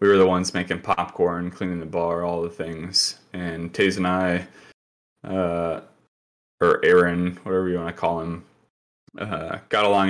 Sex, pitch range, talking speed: male, 85-100 Hz, 165 wpm